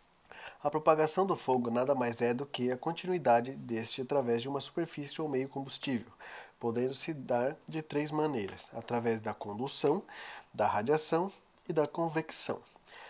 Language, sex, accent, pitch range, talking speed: Portuguese, male, Brazilian, 125-160 Hz, 145 wpm